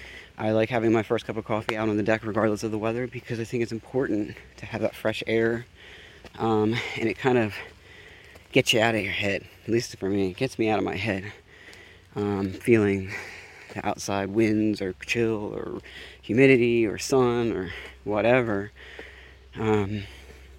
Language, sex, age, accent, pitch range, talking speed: English, male, 20-39, American, 105-125 Hz, 180 wpm